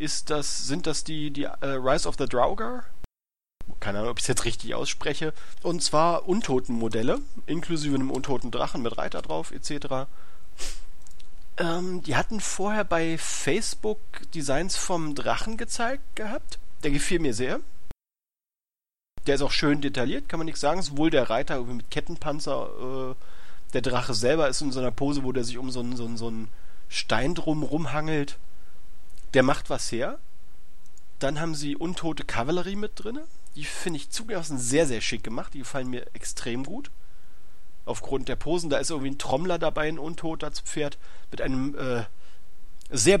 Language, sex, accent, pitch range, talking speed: German, male, German, 120-155 Hz, 160 wpm